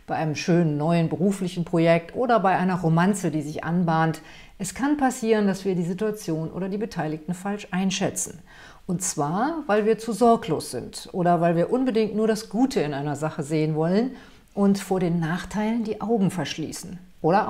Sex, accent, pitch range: female, German, 160-210 Hz